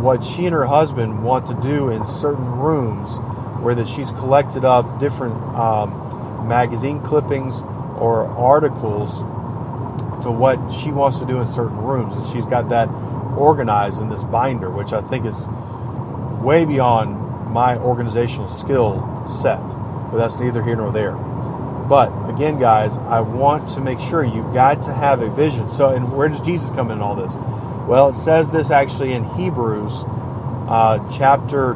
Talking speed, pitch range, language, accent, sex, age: 165 wpm, 120-140 Hz, English, American, male, 40-59